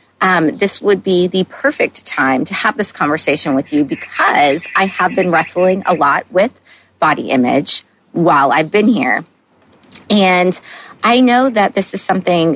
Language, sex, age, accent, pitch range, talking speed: English, female, 30-49, American, 150-190 Hz, 160 wpm